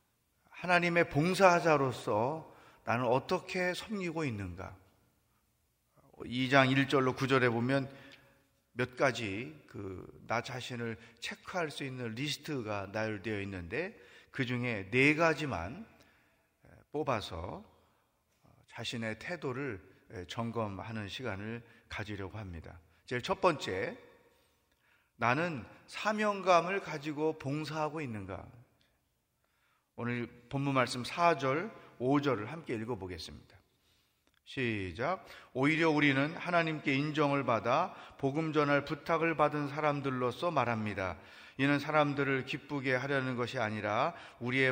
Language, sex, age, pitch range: Korean, male, 30-49, 115-155 Hz